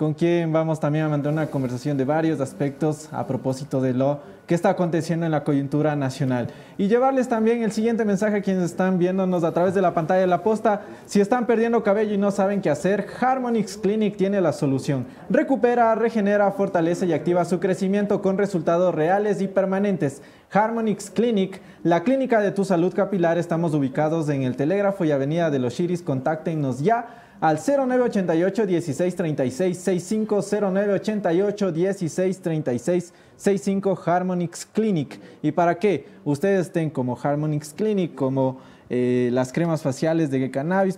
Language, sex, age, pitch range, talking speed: English, male, 20-39, 155-205 Hz, 155 wpm